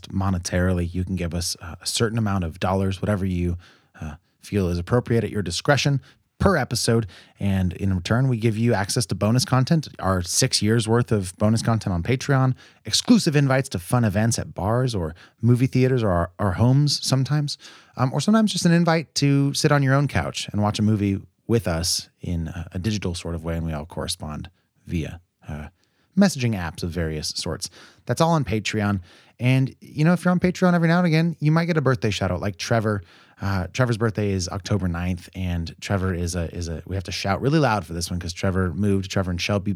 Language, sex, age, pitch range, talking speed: English, male, 30-49, 90-120 Hz, 215 wpm